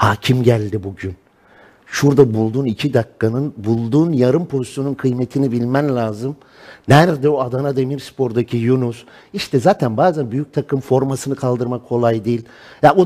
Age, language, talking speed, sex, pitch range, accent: 50-69, Turkish, 135 wpm, male, 135-185 Hz, native